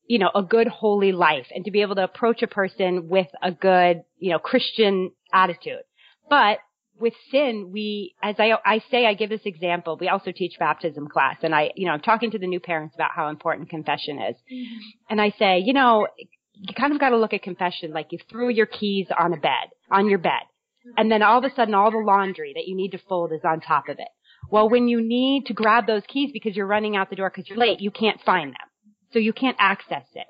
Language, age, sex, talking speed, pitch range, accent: English, 30-49, female, 240 wpm, 185-235 Hz, American